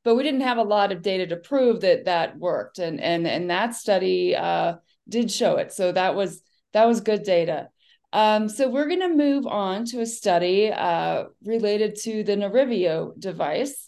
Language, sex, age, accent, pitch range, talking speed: English, female, 30-49, American, 200-250 Hz, 190 wpm